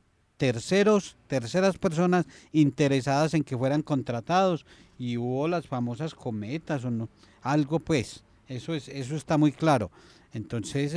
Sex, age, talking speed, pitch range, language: male, 40-59, 130 wpm, 120-155 Hz, Spanish